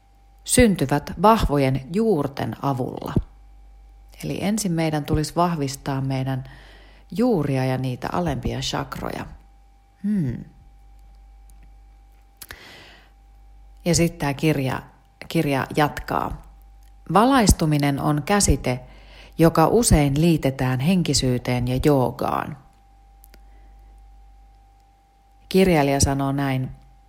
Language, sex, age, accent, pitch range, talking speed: Finnish, female, 30-49, native, 130-170 Hz, 70 wpm